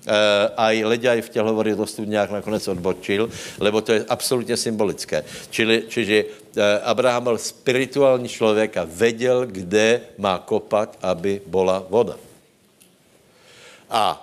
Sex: male